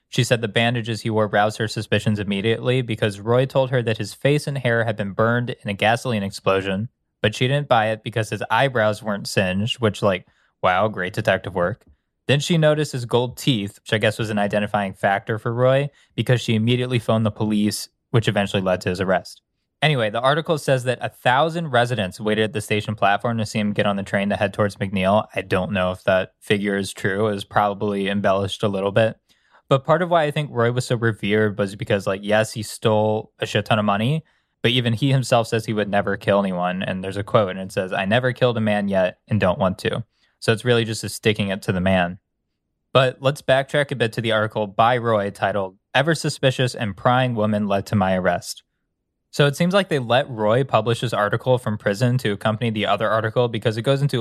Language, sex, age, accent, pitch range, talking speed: English, male, 20-39, American, 100-125 Hz, 230 wpm